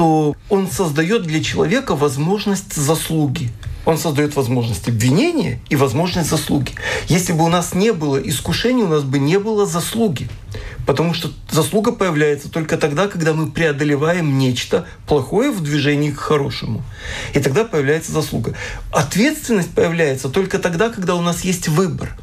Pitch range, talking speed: 140-180 Hz, 150 wpm